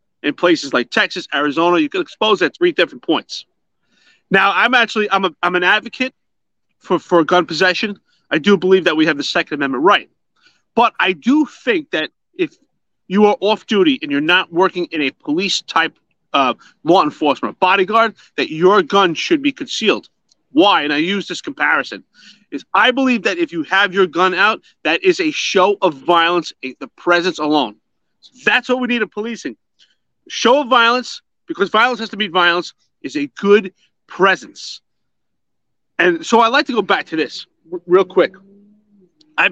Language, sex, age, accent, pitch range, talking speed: English, male, 30-49, American, 180-250 Hz, 180 wpm